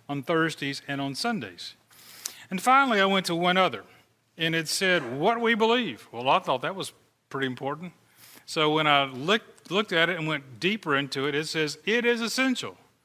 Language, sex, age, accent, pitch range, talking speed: English, male, 40-59, American, 140-195 Hz, 195 wpm